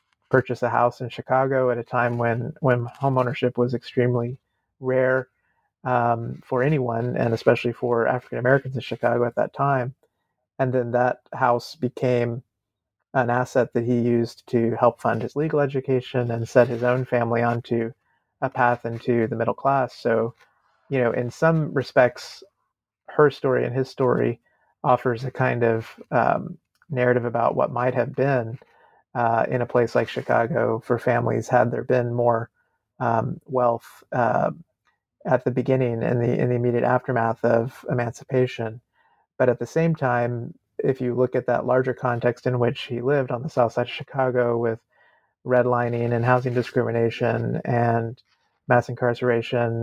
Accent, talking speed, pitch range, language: American, 160 wpm, 120-130 Hz, English